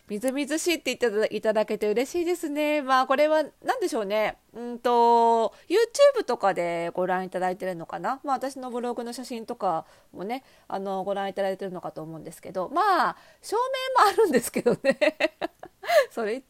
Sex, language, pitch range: female, Japanese, 175-290 Hz